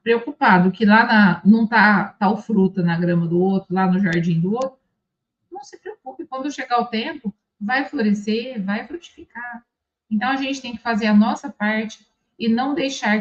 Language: Portuguese